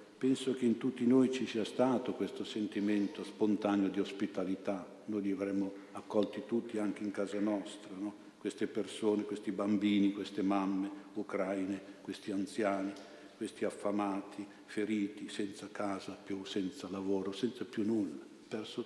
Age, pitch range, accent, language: 50-69, 100-110 Hz, native, Italian